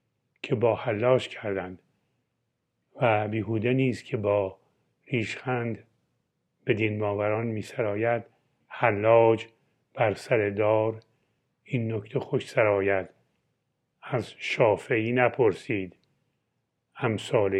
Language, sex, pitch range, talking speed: Persian, male, 105-125 Hz, 85 wpm